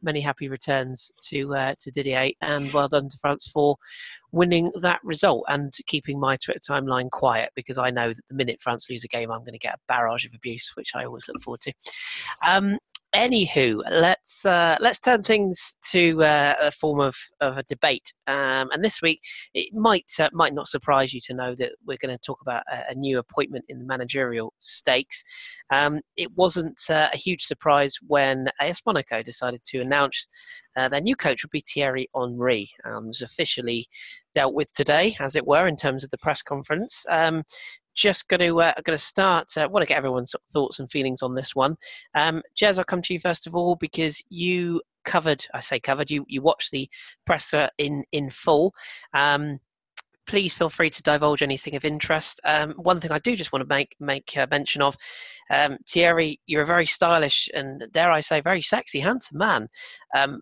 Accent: British